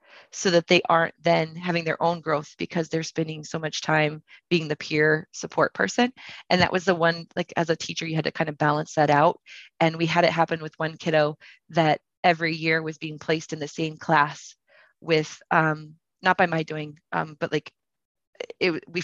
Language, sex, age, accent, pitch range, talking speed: English, female, 20-39, American, 160-190 Hz, 205 wpm